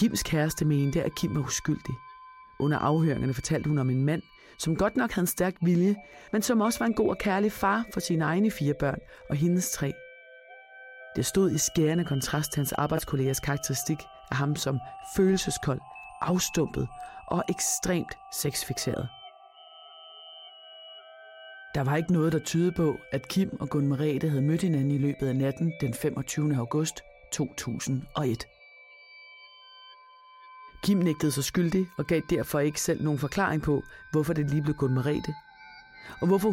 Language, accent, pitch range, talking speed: Danish, native, 135-190 Hz, 160 wpm